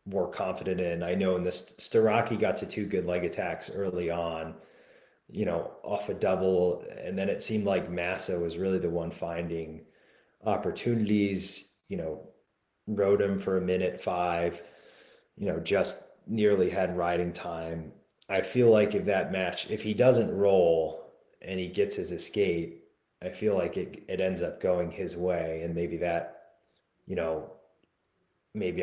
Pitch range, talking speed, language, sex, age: 85-95 Hz, 165 wpm, English, male, 30-49